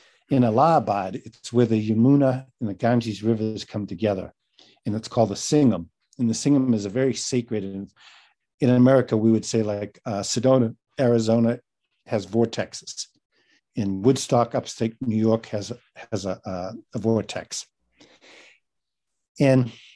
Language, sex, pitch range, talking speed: English, male, 105-130 Hz, 140 wpm